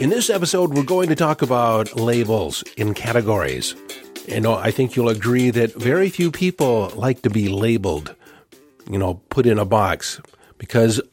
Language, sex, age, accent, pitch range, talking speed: English, male, 50-69, American, 110-135 Hz, 165 wpm